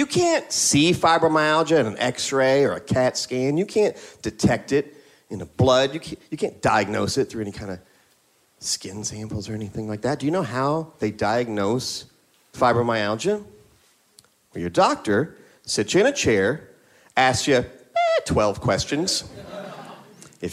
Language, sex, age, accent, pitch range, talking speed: English, male, 40-59, American, 125-200 Hz, 160 wpm